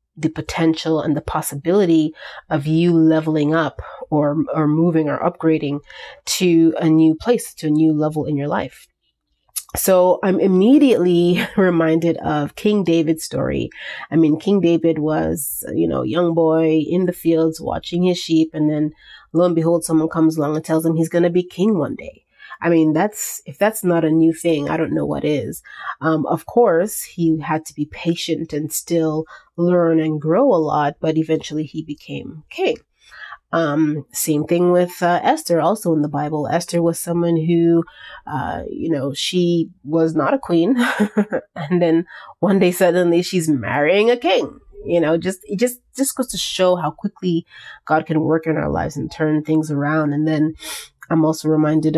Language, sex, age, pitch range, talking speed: English, female, 30-49, 155-175 Hz, 180 wpm